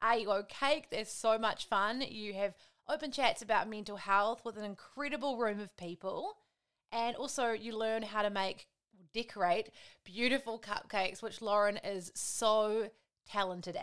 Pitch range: 205-250 Hz